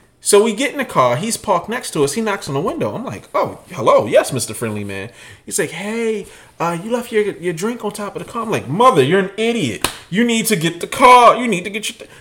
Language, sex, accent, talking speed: English, male, American, 275 wpm